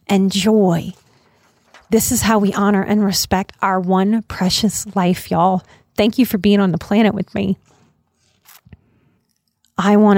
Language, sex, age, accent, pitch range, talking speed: English, female, 30-49, American, 195-235 Hz, 145 wpm